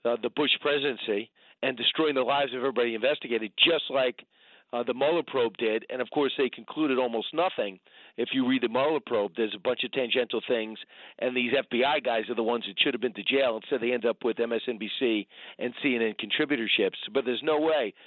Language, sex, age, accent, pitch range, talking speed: English, male, 40-59, American, 120-165 Hz, 210 wpm